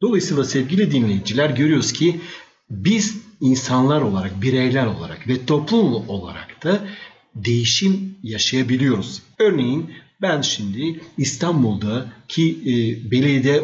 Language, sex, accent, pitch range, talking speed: Turkish, male, native, 125-160 Hz, 95 wpm